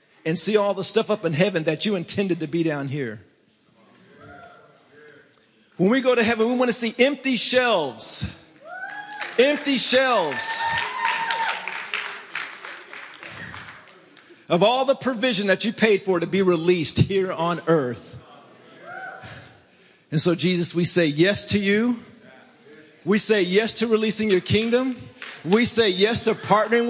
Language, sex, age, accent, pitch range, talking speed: English, male, 40-59, American, 155-225 Hz, 140 wpm